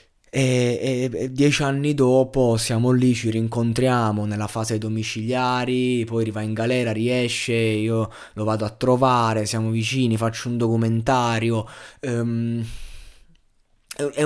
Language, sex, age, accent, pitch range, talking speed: Italian, male, 20-39, native, 110-125 Hz, 115 wpm